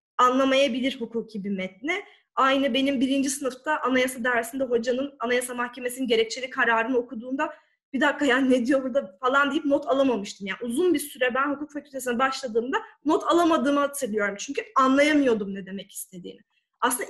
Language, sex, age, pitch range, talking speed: Turkish, female, 30-49, 235-300 Hz, 150 wpm